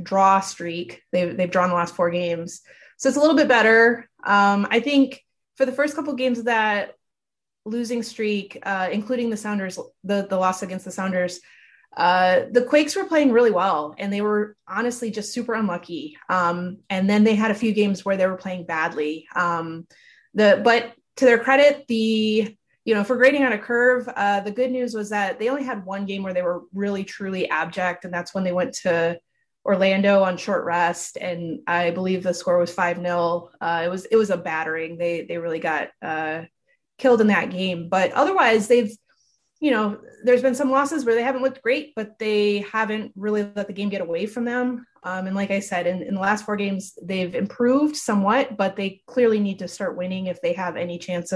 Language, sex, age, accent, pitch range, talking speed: English, female, 20-39, American, 180-230 Hz, 210 wpm